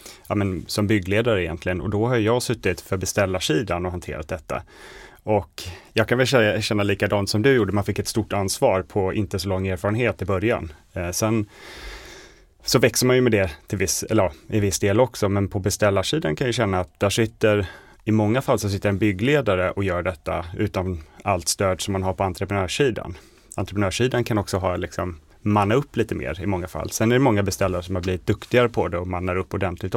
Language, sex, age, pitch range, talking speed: Swedish, male, 30-49, 95-110 Hz, 210 wpm